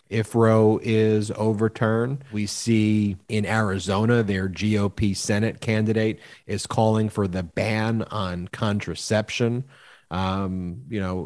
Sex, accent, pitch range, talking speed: male, American, 100-115 Hz, 115 wpm